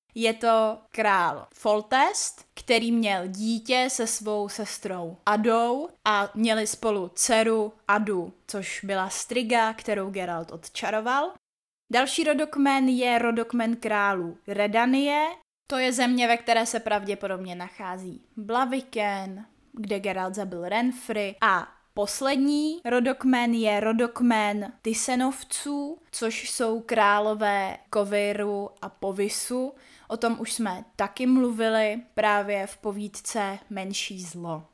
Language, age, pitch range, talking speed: Czech, 20-39, 205-250 Hz, 110 wpm